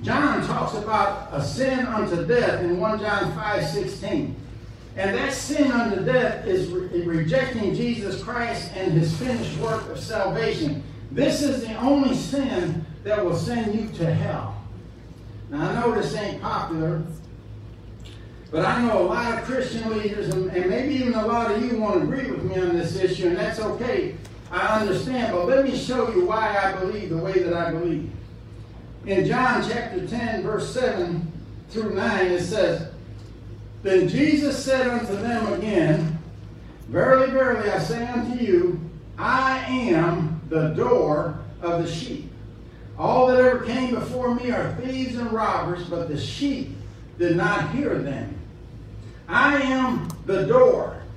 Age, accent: 60-79, American